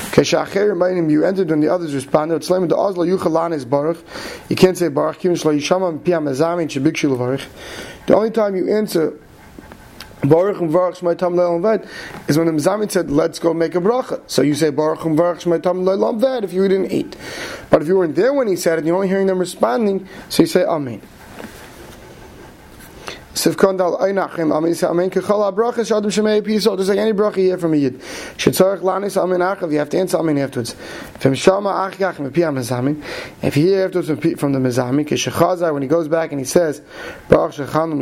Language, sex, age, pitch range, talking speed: English, male, 30-49, 155-190 Hz, 105 wpm